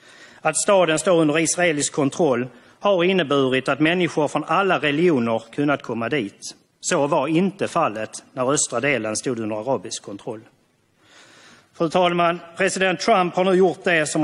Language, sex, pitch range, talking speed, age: Swedish, male, 125-165 Hz, 150 wpm, 40-59